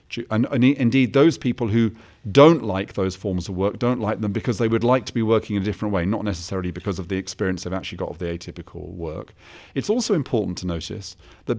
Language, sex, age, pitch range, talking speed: English, male, 40-59, 95-115 Hz, 235 wpm